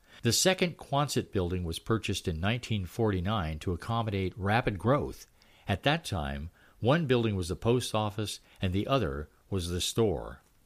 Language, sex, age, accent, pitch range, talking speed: English, male, 50-69, American, 85-120 Hz, 150 wpm